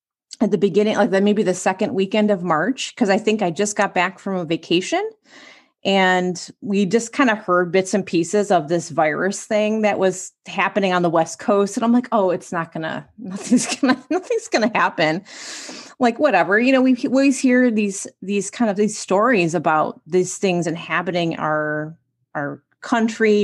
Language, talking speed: English, 185 wpm